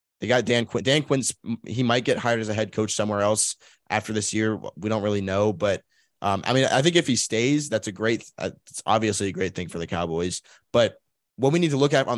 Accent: American